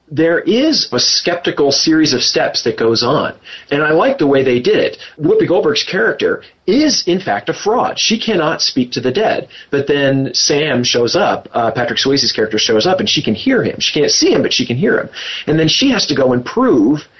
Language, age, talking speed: English, 40-59, 225 wpm